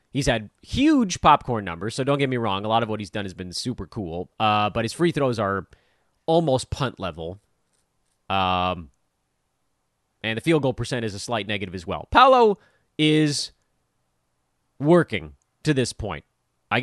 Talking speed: 170 wpm